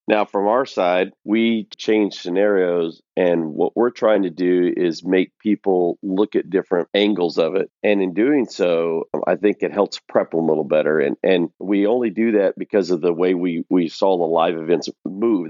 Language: English